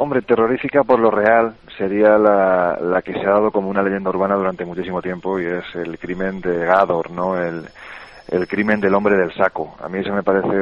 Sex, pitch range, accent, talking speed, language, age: male, 90-105 Hz, Spanish, 215 wpm, Spanish, 40-59